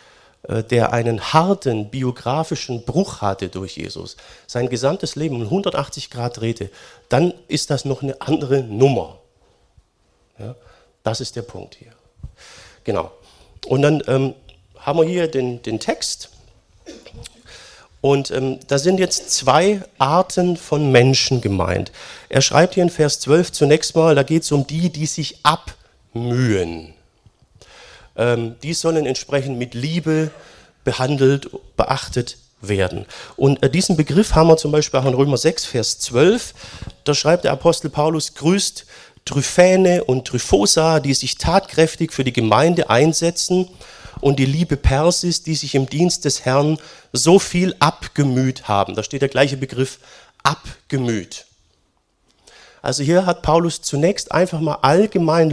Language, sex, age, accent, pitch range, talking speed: German, male, 40-59, German, 120-160 Hz, 140 wpm